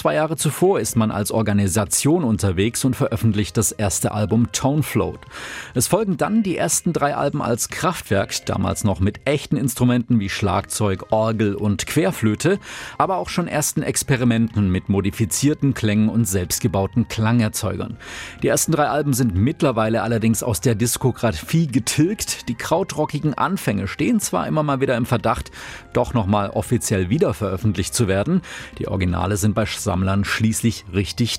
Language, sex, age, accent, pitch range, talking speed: German, male, 40-59, German, 100-135 Hz, 150 wpm